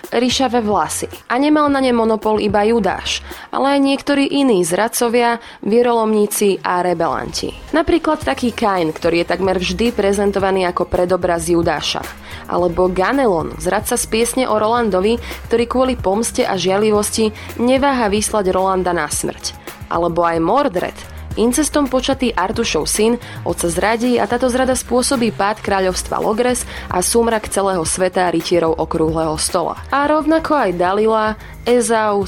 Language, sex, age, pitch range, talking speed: Slovak, female, 20-39, 185-245 Hz, 135 wpm